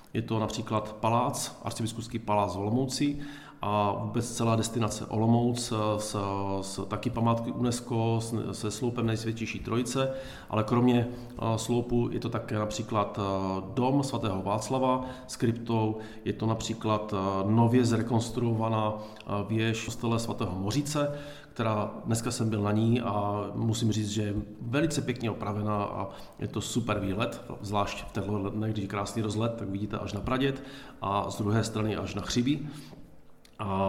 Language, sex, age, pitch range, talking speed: Czech, male, 40-59, 105-120 Hz, 140 wpm